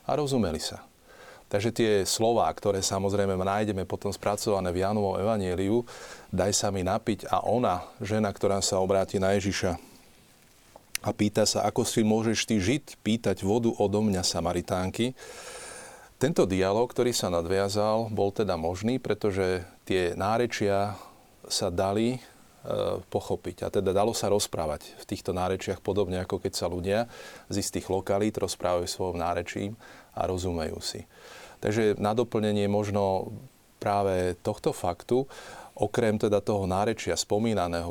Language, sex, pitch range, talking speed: Slovak, male, 95-105 Hz, 140 wpm